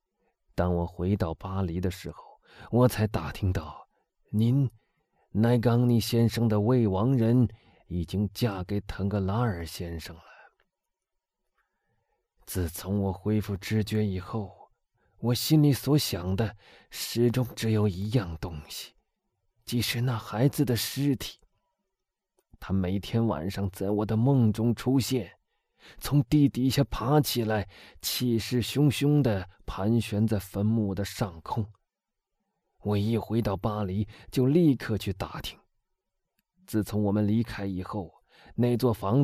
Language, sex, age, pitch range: Chinese, male, 30-49, 100-125 Hz